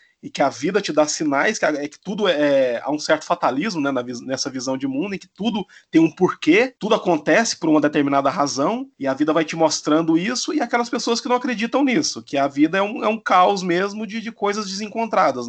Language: Portuguese